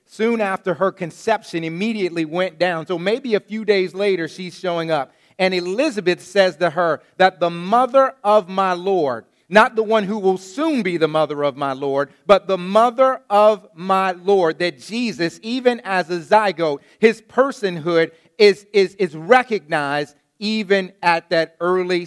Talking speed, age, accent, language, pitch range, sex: 165 wpm, 40-59, American, English, 140-190 Hz, male